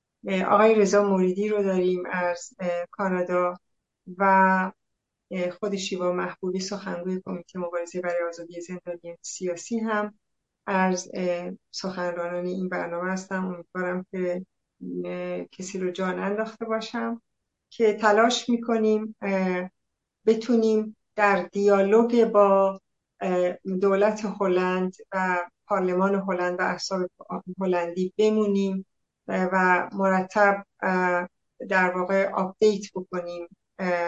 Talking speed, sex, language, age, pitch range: 95 wpm, female, Persian, 60-79, 180-205 Hz